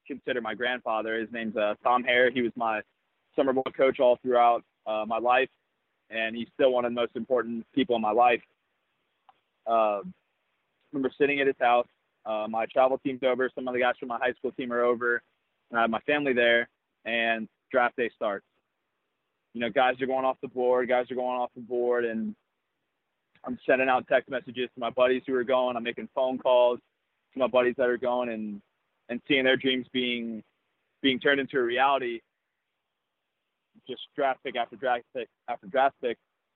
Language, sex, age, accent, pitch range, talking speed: English, male, 20-39, American, 115-130 Hz, 190 wpm